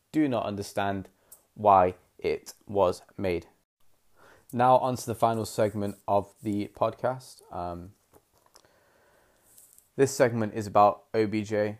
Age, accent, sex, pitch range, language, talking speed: 20-39, British, male, 95-110 Hz, English, 110 wpm